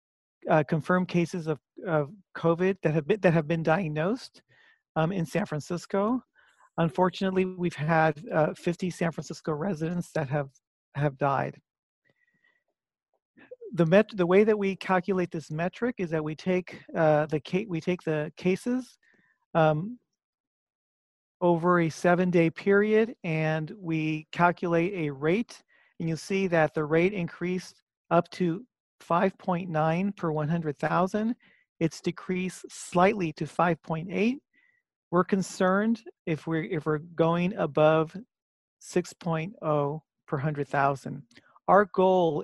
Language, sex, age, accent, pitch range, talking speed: English, male, 40-59, American, 155-185 Hz, 135 wpm